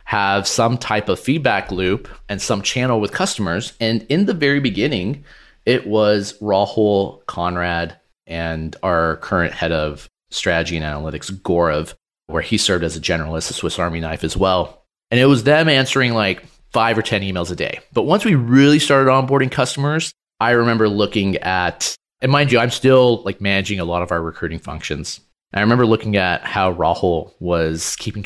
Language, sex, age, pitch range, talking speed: English, male, 30-49, 90-120 Hz, 180 wpm